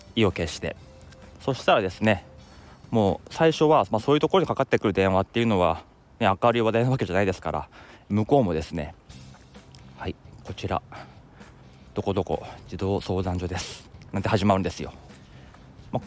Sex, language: male, Japanese